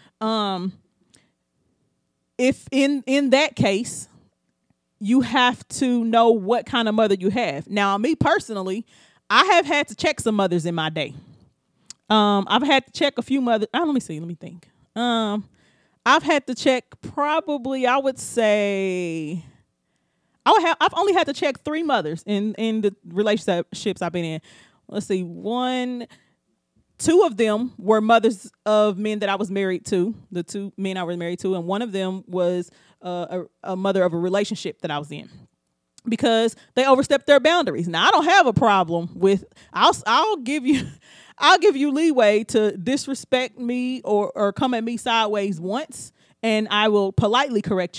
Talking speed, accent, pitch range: 180 wpm, American, 190-260 Hz